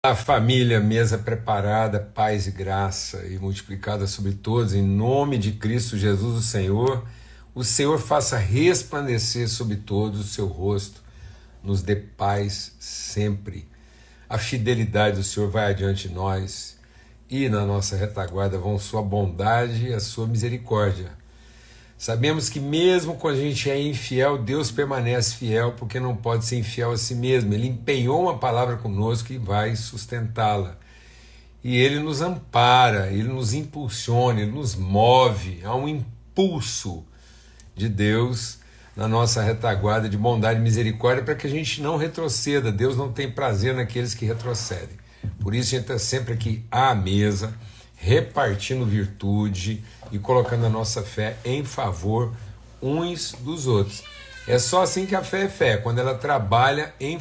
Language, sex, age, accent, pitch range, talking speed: Portuguese, male, 60-79, Brazilian, 105-125 Hz, 150 wpm